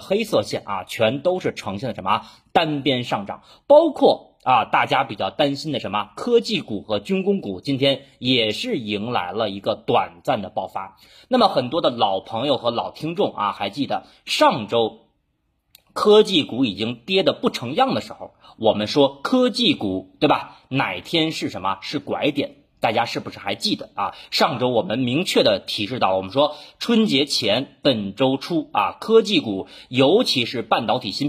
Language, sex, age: Chinese, male, 30-49